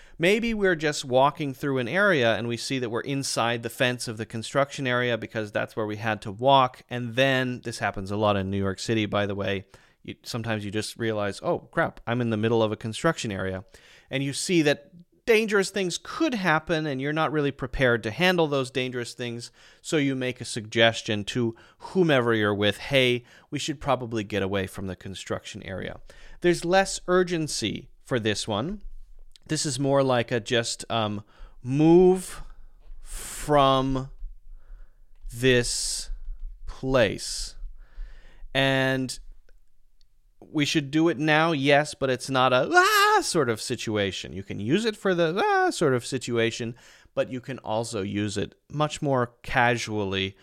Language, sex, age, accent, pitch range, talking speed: English, male, 30-49, American, 110-145 Hz, 170 wpm